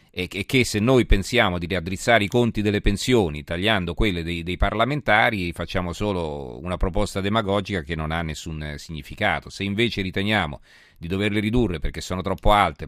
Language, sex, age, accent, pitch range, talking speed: Italian, male, 40-59, native, 85-105 Hz, 170 wpm